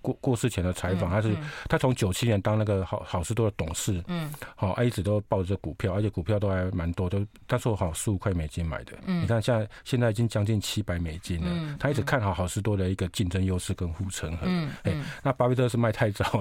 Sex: male